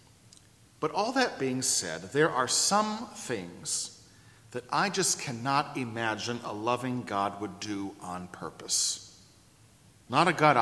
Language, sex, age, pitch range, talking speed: English, male, 40-59, 115-160 Hz, 135 wpm